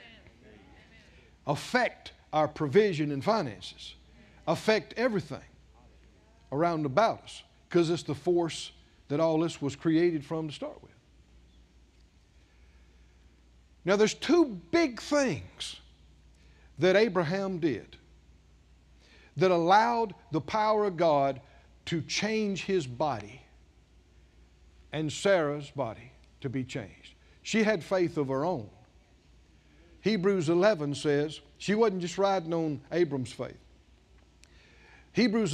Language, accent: English, American